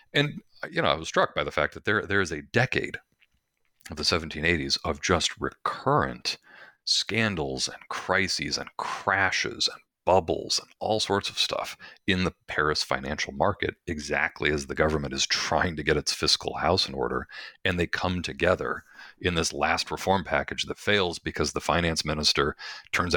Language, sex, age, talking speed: English, male, 40-59, 175 wpm